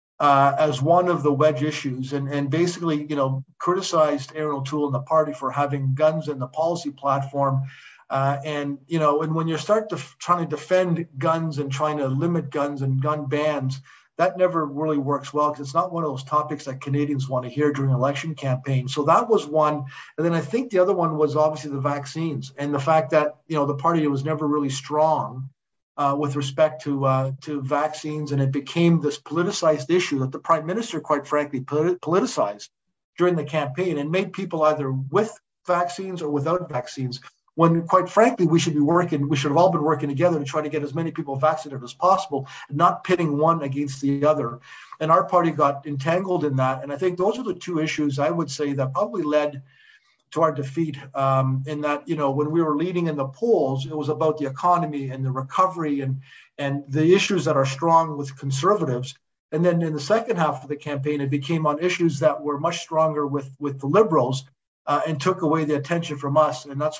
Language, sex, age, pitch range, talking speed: English, male, 50-69, 140-165 Hz, 215 wpm